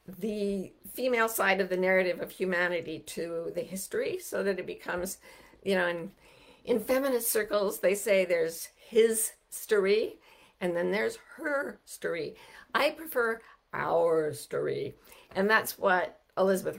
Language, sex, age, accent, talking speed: English, female, 50-69, American, 140 wpm